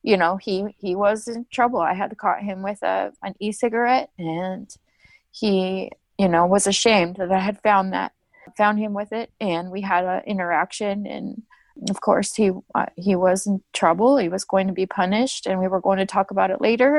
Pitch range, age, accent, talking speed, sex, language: 195-230 Hz, 20-39, American, 210 wpm, female, English